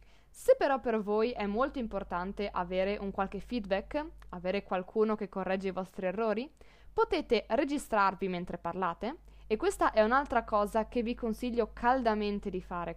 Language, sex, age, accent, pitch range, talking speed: Italian, female, 20-39, native, 195-280 Hz, 155 wpm